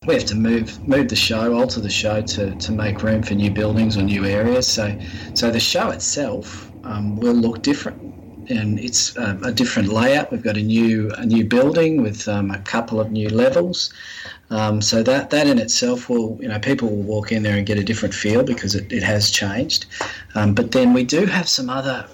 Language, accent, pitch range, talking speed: English, Australian, 105-115 Hz, 220 wpm